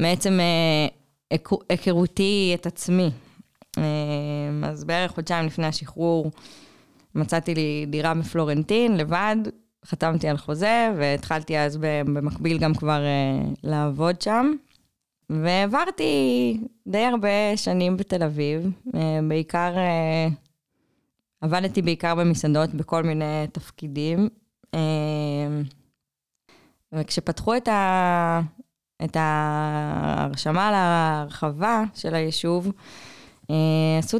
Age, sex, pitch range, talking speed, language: 20-39, female, 150-175 Hz, 80 wpm, Hebrew